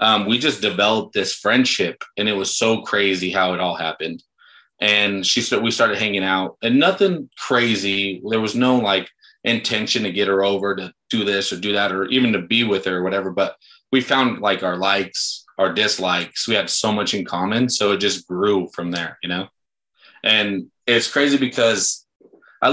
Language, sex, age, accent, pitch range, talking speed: English, male, 20-39, American, 95-125 Hz, 200 wpm